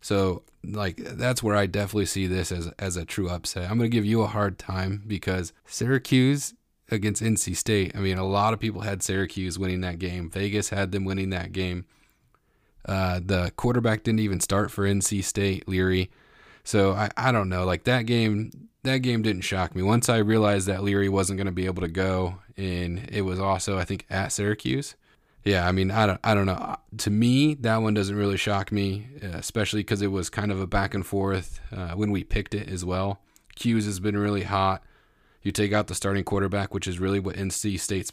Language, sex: English, male